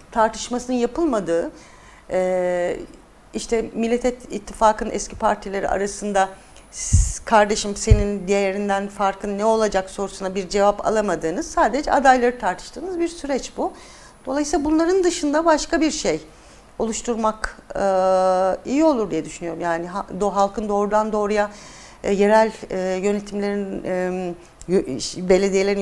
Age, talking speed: 50-69, 100 wpm